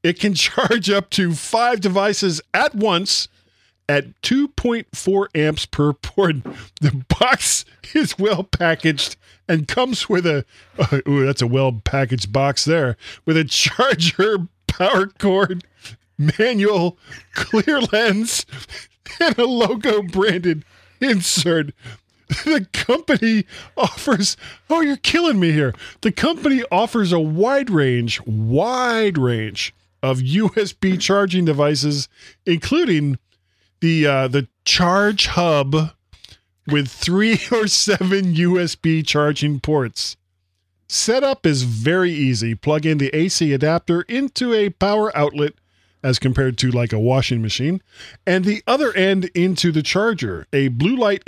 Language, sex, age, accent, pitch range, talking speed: English, male, 40-59, American, 135-205 Hz, 120 wpm